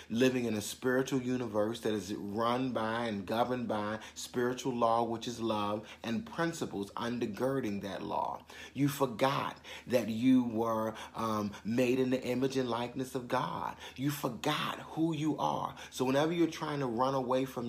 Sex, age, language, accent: male, 30-49, English, American